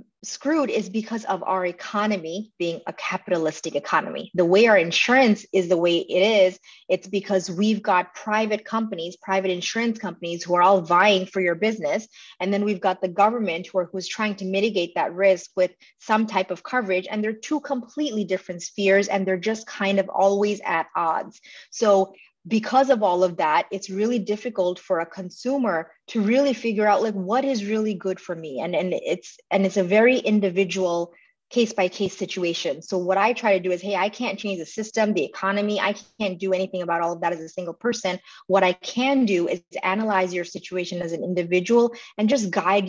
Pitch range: 185-225 Hz